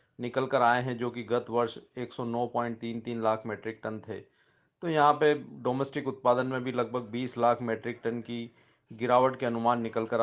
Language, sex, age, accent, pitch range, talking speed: English, male, 30-49, Indian, 120-135 Hz, 180 wpm